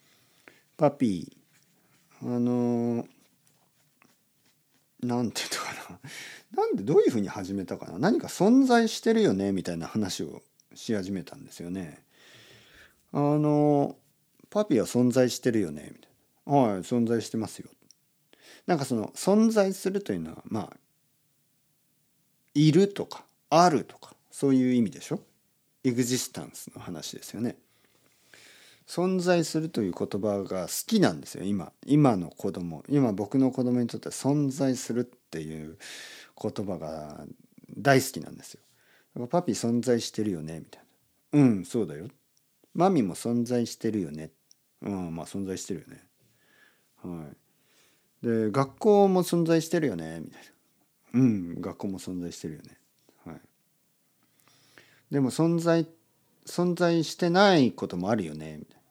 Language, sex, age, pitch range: Japanese, male, 50-69, 100-155 Hz